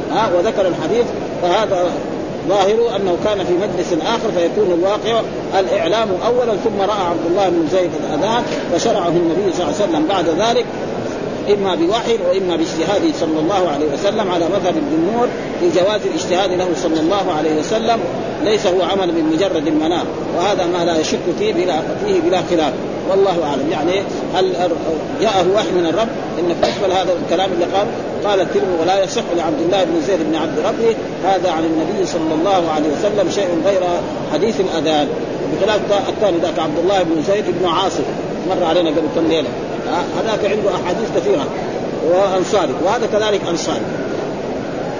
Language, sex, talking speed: Arabic, male, 160 wpm